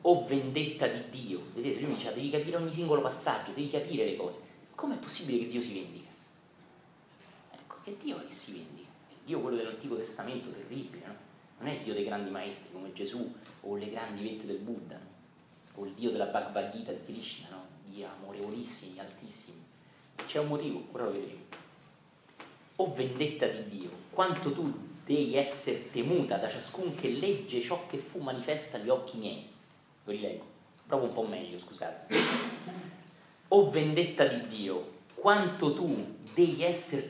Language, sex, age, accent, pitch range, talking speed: Italian, male, 30-49, native, 130-180 Hz, 170 wpm